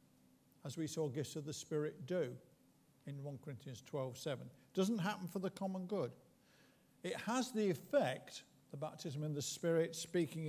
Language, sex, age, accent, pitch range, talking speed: English, male, 50-69, British, 145-195 Hz, 170 wpm